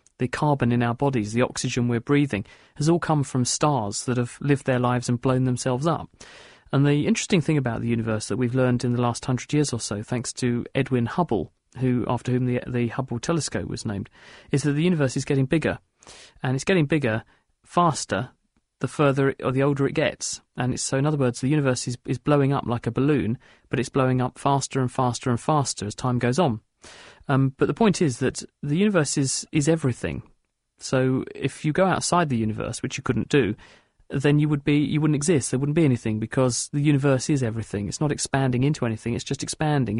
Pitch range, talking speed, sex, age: 125-145 Hz, 220 wpm, male, 40-59